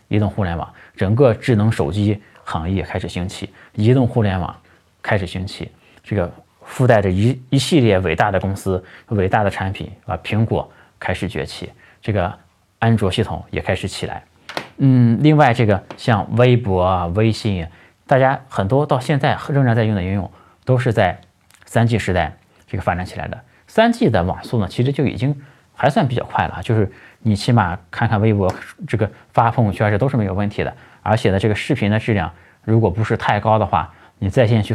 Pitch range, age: 95-120 Hz, 20-39